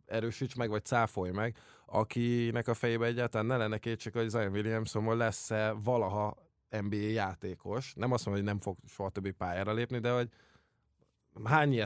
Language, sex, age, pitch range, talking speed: English, male, 20-39, 100-115 Hz, 165 wpm